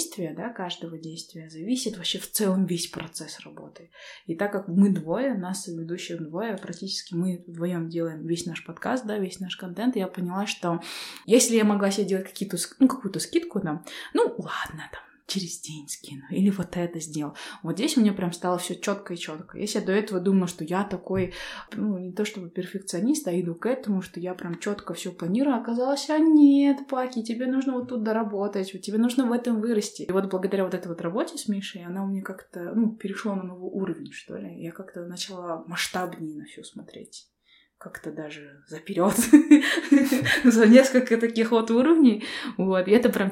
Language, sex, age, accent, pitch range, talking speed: Russian, female, 20-39, native, 175-230 Hz, 195 wpm